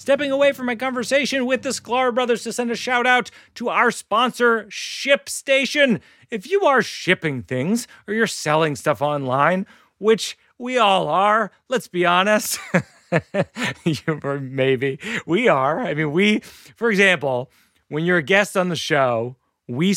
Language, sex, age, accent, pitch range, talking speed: English, male, 40-59, American, 165-250 Hz, 155 wpm